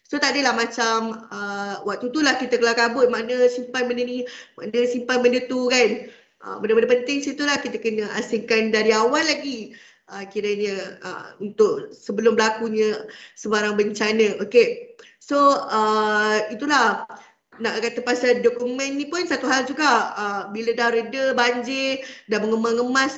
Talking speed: 155 wpm